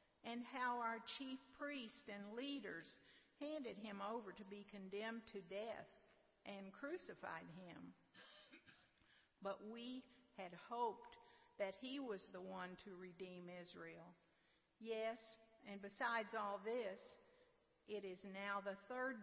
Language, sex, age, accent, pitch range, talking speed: English, female, 50-69, American, 200-265 Hz, 125 wpm